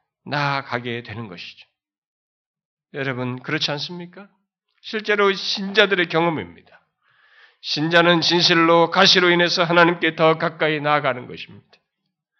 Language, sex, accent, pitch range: Korean, male, native, 150-195 Hz